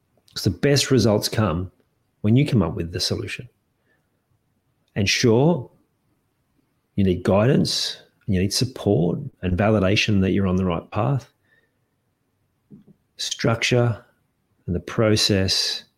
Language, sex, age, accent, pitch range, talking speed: English, male, 40-59, Australian, 95-120 Hz, 120 wpm